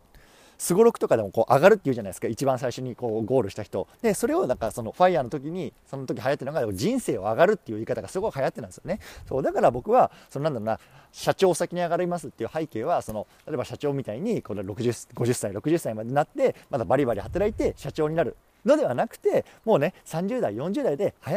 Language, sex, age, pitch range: Japanese, male, 40-59, 125-190 Hz